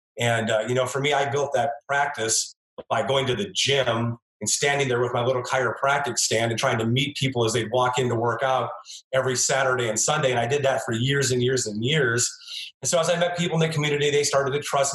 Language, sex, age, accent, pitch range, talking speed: English, male, 30-49, American, 125-145 Hz, 250 wpm